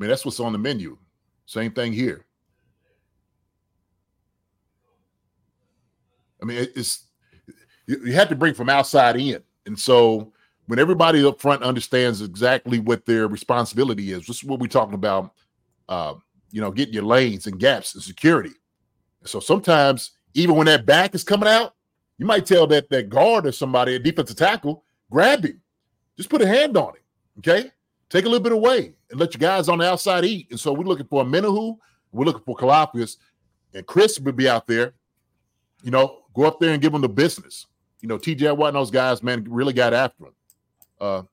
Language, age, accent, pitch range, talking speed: English, 30-49, American, 115-155 Hz, 190 wpm